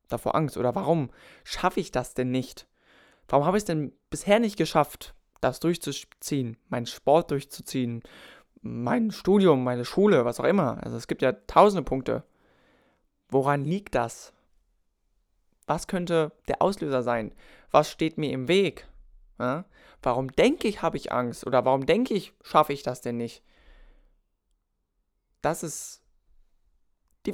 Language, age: German, 20-39